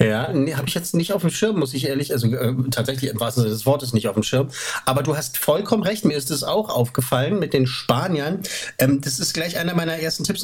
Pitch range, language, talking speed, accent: 125-160 Hz, German, 260 wpm, German